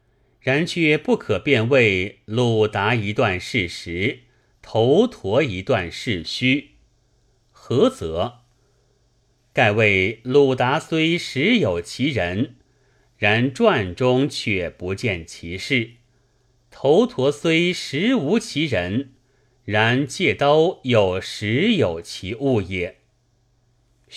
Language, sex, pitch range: Chinese, male, 105-140 Hz